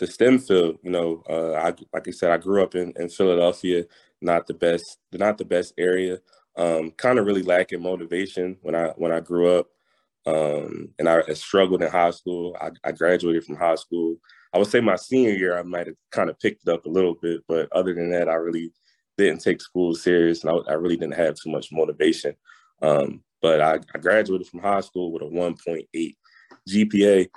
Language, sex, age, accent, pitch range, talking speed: English, male, 20-39, American, 85-90 Hz, 215 wpm